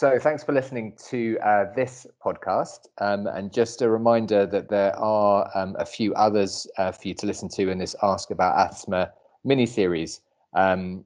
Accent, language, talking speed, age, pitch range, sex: British, English, 180 wpm, 30-49, 95-110 Hz, male